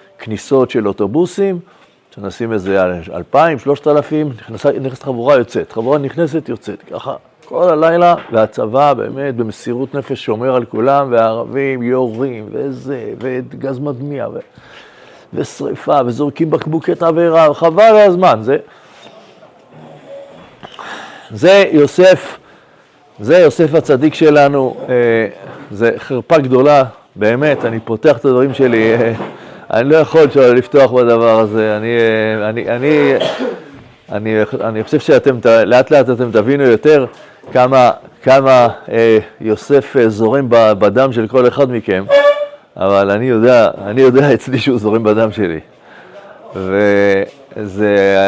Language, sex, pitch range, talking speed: Hebrew, male, 110-145 Hz, 120 wpm